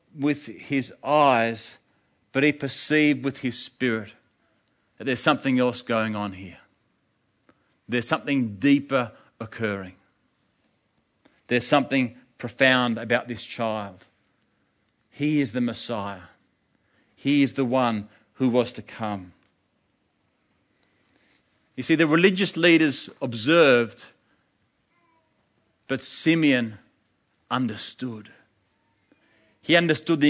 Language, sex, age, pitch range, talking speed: English, male, 40-59, 120-160 Hz, 100 wpm